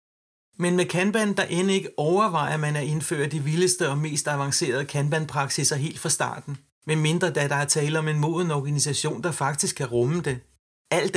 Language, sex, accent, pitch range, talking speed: Danish, male, native, 140-175 Hz, 195 wpm